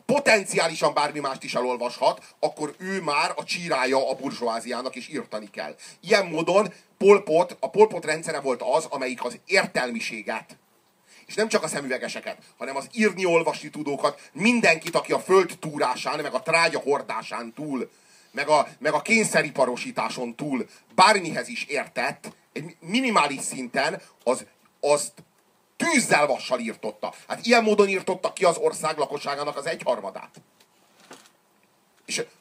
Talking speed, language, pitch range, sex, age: 135 wpm, Hungarian, 135-200 Hz, male, 30-49